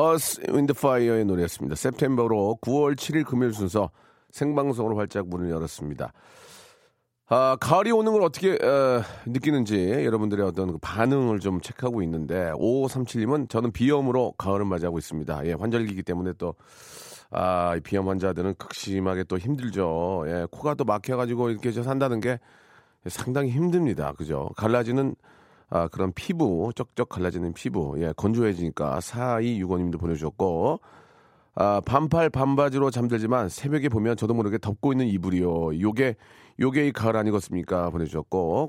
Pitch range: 95-135 Hz